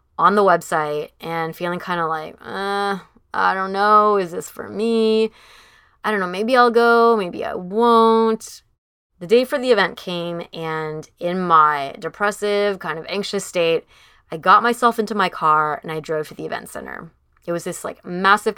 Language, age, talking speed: English, 20-39, 185 wpm